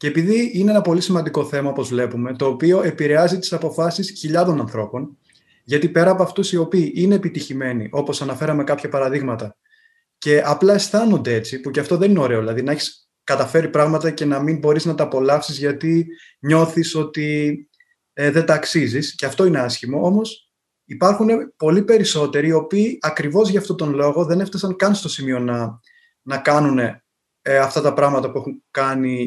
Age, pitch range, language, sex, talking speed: 20-39, 140-185 Hz, Greek, male, 175 wpm